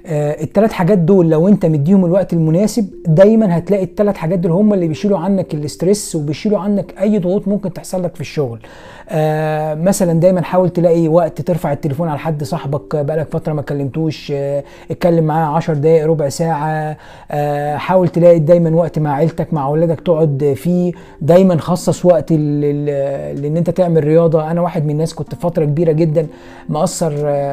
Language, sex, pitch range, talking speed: Arabic, male, 155-185 Hz, 170 wpm